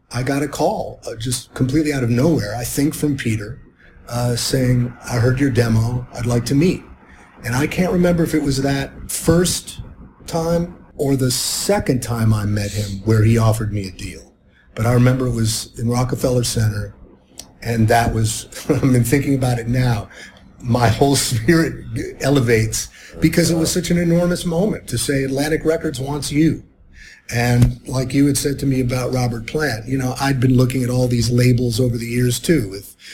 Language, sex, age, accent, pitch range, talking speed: English, male, 50-69, American, 115-150 Hz, 190 wpm